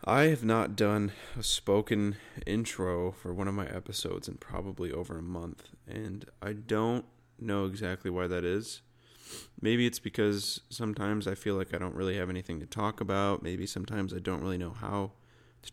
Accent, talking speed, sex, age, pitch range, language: American, 185 wpm, male, 20-39, 95-120 Hz, English